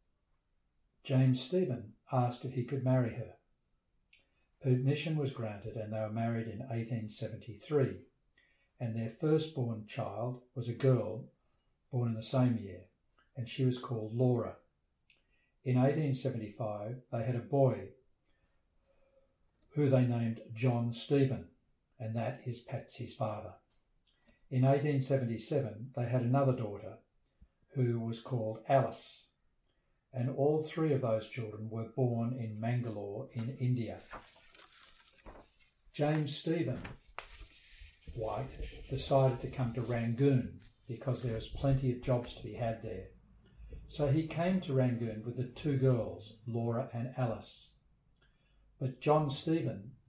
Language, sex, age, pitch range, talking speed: English, male, 60-79, 110-130 Hz, 125 wpm